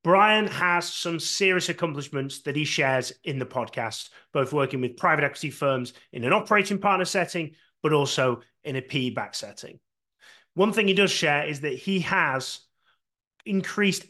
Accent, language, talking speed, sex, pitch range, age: British, English, 165 wpm, male, 125-185 Hz, 30-49